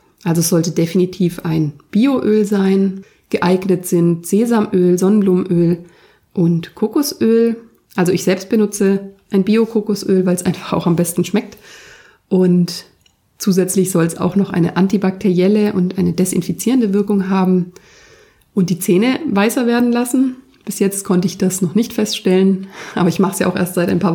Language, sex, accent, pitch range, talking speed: German, female, German, 180-210 Hz, 155 wpm